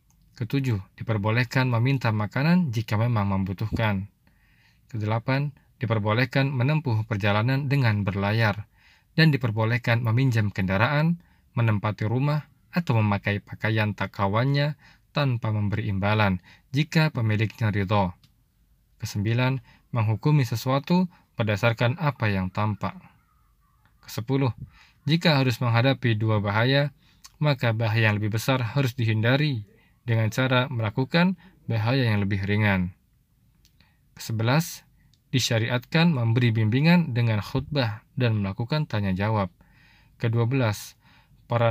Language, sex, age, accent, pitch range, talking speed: Indonesian, male, 20-39, native, 105-130 Hz, 95 wpm